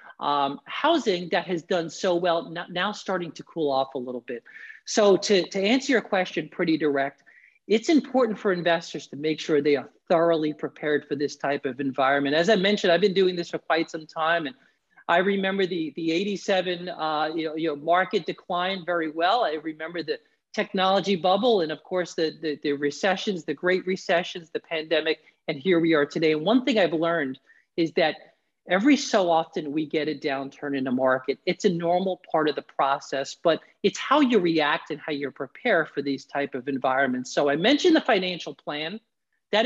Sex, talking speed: male, 200 wpm